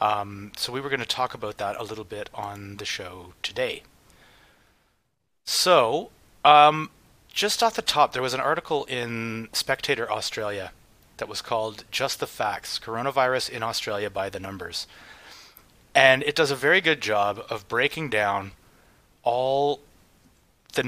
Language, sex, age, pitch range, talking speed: English, male, 30-49, 105-135 Hz, 150 wpm